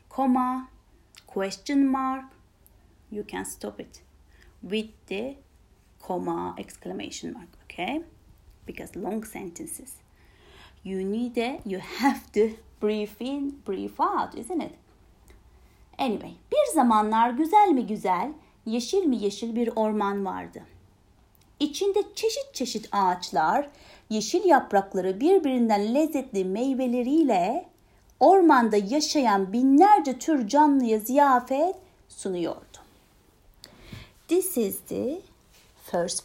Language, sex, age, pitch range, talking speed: Turkish, female, 30-49, 210-310 Hz, 100 wpm